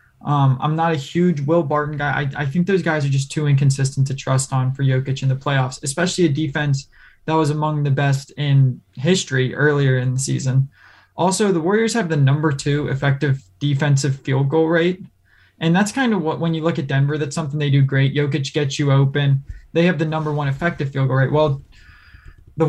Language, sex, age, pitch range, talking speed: English, male, 20-39, 135-160 Hz, 215 wpm